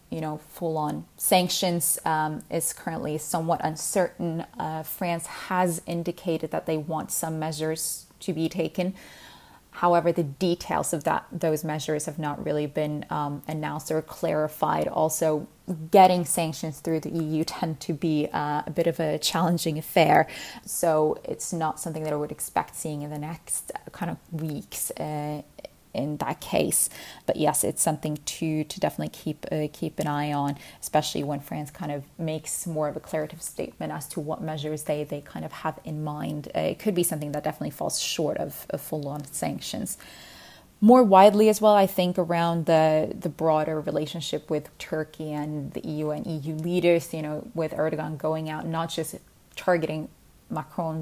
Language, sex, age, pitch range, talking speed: English, female, 20-39, 155-170 Hz, 175 wpm